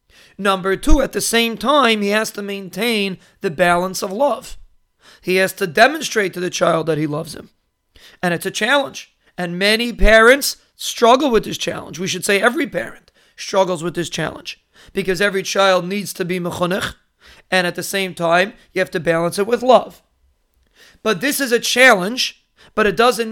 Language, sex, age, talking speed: English, male, 40-59, 185 wpm